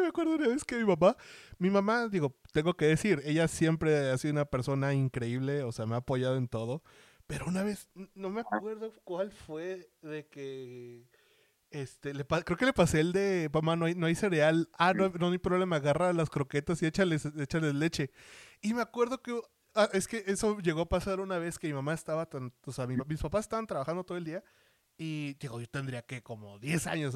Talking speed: 225 wpm